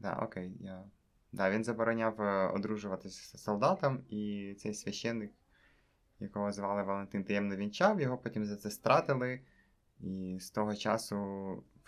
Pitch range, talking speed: 100-110 Hz, 120 wpm